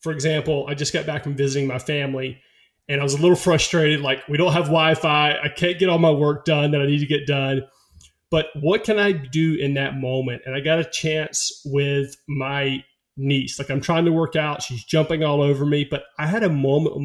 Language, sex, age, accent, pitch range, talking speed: English, male, 30-49, American, 135-160 Hz, 235 wpm